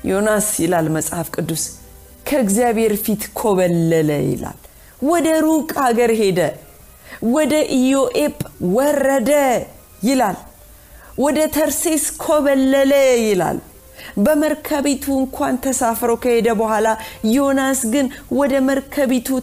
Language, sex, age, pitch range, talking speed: Amharic, female, 40-59, 170-265 Hz, 95 wpm